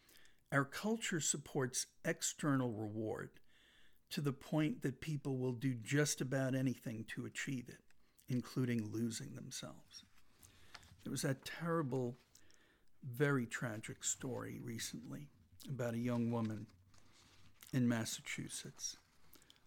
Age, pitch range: 60-79, 120-145 Hz